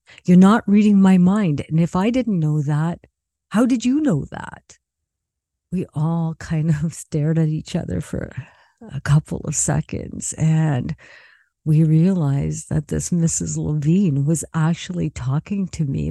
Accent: American